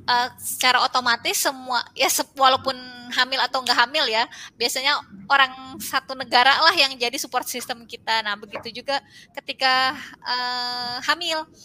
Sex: female